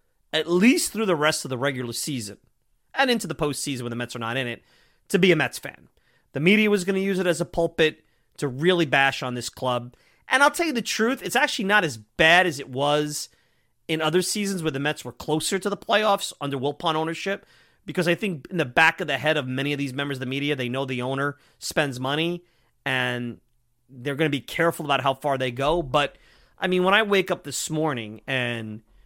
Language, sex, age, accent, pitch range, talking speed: English, male, 30-49, American, 125-175 Hz, 235 wpm